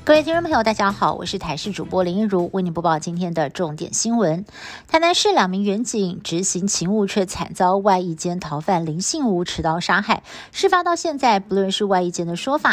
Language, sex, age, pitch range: Chinese, female, 50-69, 175-220 Hz